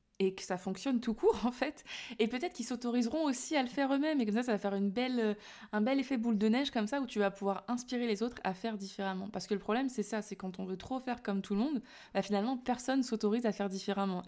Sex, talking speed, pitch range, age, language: female, 280 wpm, 195-230 Hz, 20-39, French